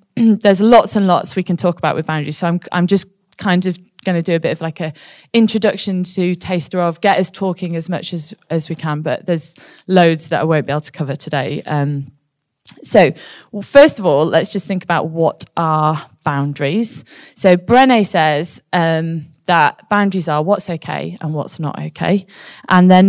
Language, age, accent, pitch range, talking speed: English, 20-39, British, 160-190 Hz, 200 wpm